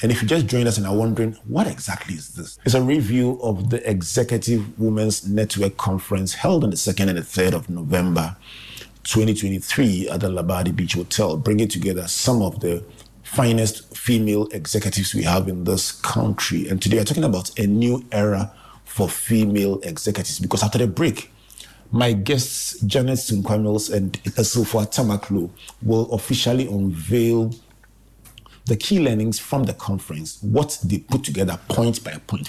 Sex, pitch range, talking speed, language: male, 95-115 Hz, 160 wpm, English